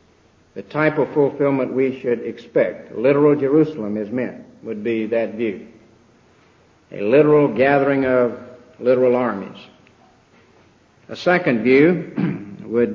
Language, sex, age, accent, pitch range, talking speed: English, male, 60-79, American, 115-145 Hz, 115 wpm